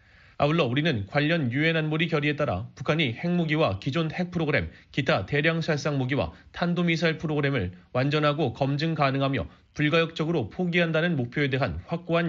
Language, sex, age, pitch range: Korean, male, 30-49, 125-160 Hz